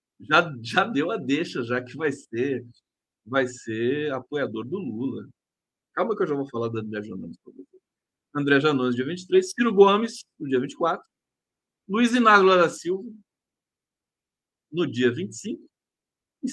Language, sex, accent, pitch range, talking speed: Portuguese, male, Brazilian, 135-210 Hz, 145 wpm